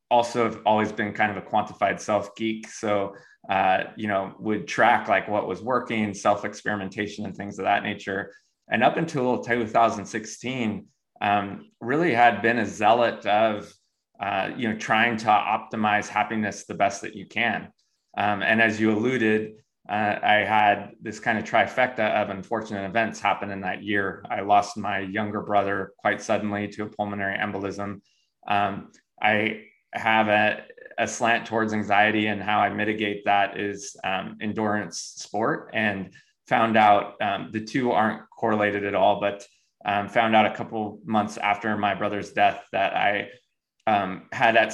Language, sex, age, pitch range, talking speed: English, male, 20-39, 100-110 Hz, 165 wpm